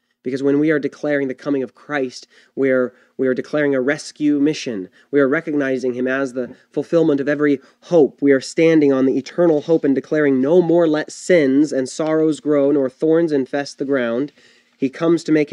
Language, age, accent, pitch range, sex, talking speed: English, 30-49, American, 130-160 Hz, male, 195 wpm